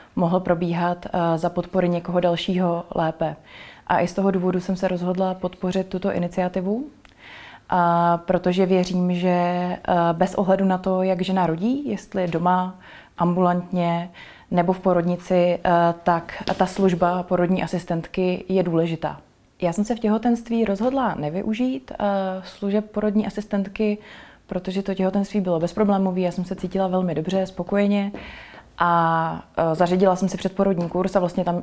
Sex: female